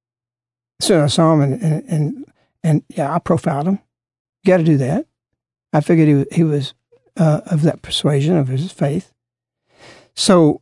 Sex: male